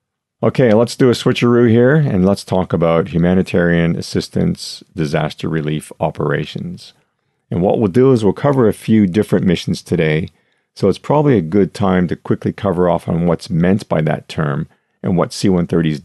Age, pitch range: 50-69, 85-115 Hz